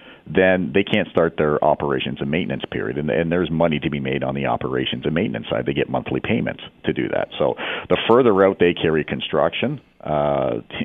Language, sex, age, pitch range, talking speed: English, male, 40-59, 70-90 Hz, 205 wpm